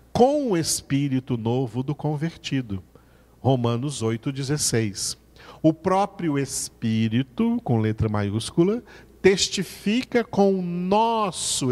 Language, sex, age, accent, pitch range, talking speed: Portuguese, male, 50-69, Brazilian, 110-160 Hz, 90 wpm